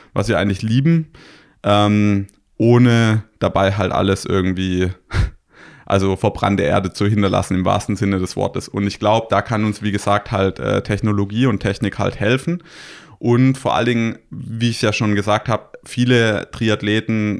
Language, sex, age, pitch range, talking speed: German, male, 20-39, 100-115 Hz, 165 wpm